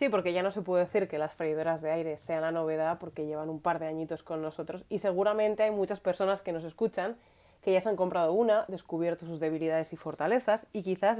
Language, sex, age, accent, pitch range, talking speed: Spanish, female, 30-49, Spanish, 165-200 Hz, 235 wpm